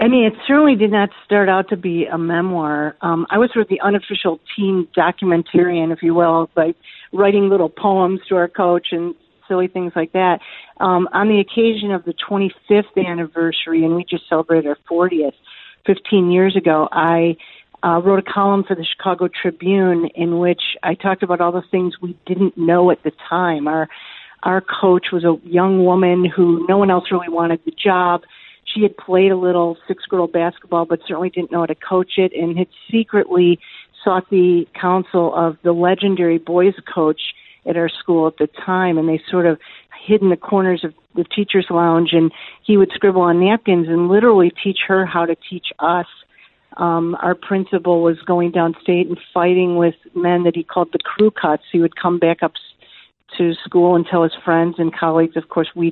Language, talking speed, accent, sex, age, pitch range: English, 195 wpm, American, female, 50-69, 170-190 Hz